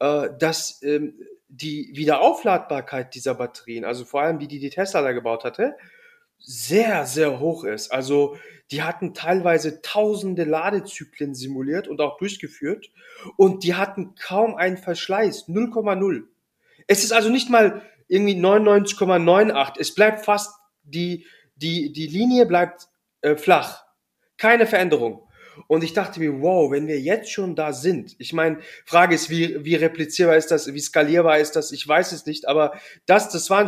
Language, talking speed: German, 155 wpm